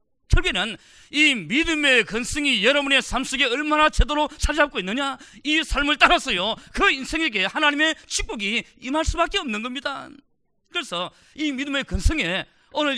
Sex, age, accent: male, 40-59, native